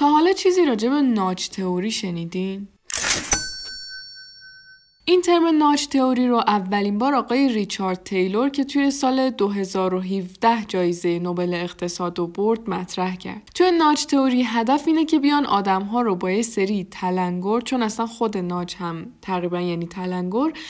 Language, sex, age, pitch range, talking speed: Persian, female, 10-29, 185-260 Hz, 145 wpm